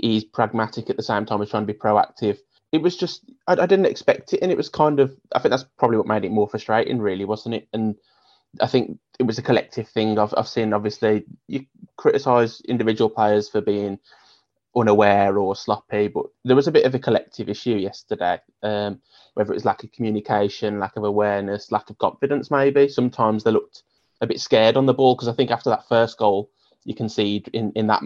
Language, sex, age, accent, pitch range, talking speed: English, male, 20-39, British, 105-125 Hz, 220 wpm